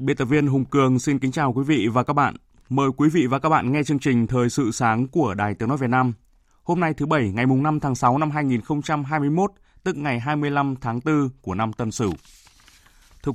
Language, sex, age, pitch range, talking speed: Vietnamese, male, 20-39, 120-150 Hz, 230 wpm